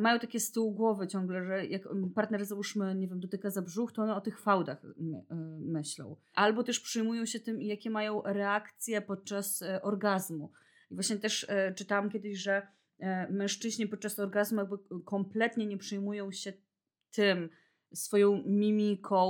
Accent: native